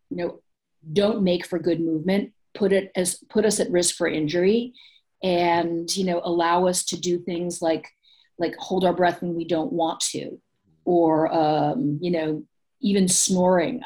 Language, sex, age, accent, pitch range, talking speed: English, female, 40-59, American, 165-190 Hz, 175 wpm